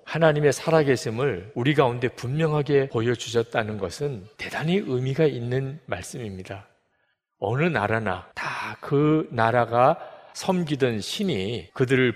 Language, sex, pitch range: Korean, male, 115-150 Hz